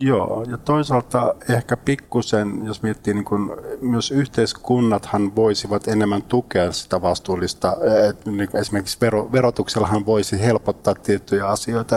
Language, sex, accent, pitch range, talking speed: Finnish, male, native, 100-115 Hz, 110 wpm